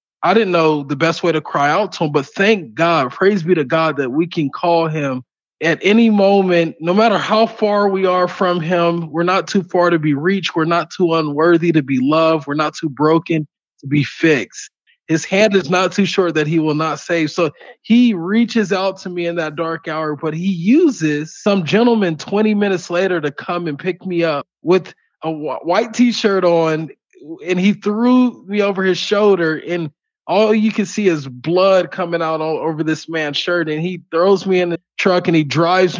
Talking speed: 210 wpm